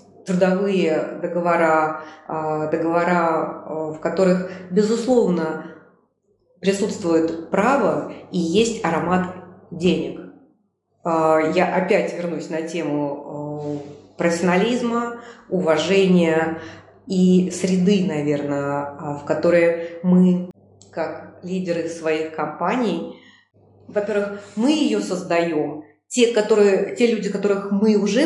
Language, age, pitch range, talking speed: Russian, 30-49, 165-200 Hz, 85 wpm